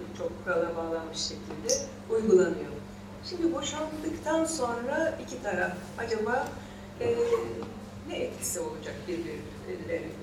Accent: native